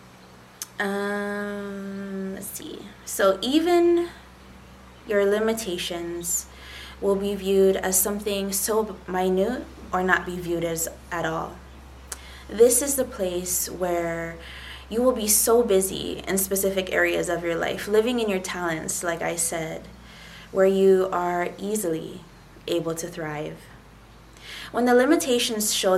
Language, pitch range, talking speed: English, 170-205 Hz, 125 wpm